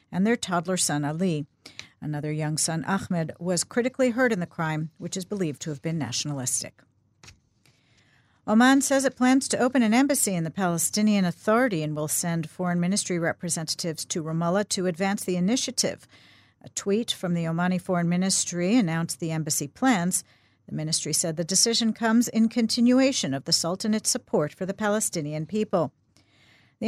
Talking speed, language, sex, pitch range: 165 wpm, English, female, 155-205 Hz